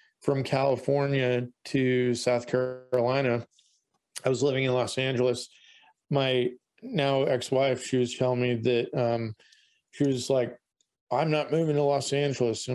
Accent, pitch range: American, 120-145 Hz